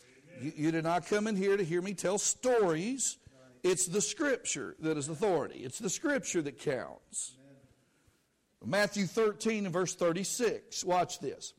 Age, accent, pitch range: 60-79, American, 165-225 Hz